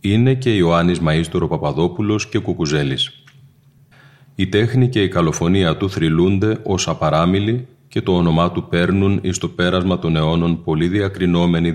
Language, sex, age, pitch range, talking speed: Greek, male, 30-49, 80-105 Hz, 145 wpm